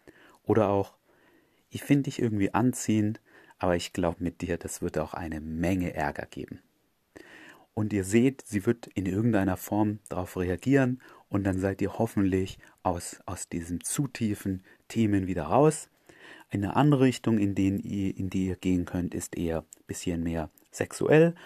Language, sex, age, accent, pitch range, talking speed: German, male, 30-49, German, 90-110 Hz, 160 wpm